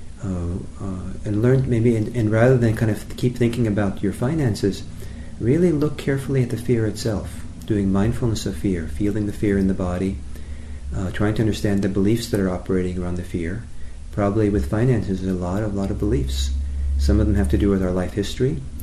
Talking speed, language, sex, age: 205 wpm, English, male, 40-59